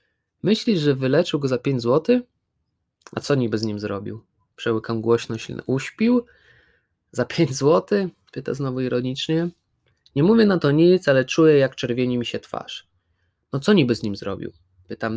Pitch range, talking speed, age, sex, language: 115-160 Hz, 165 wpm, 20-39, male, Polish